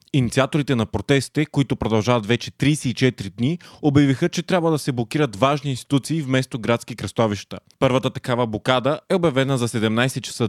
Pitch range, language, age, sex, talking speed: 115-145 Hz, Bulgarian, 20-39, male, 155 wpm